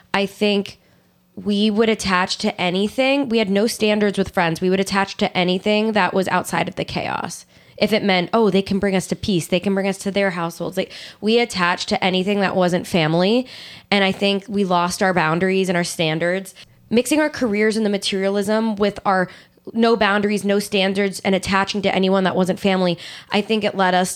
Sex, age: female, 10-29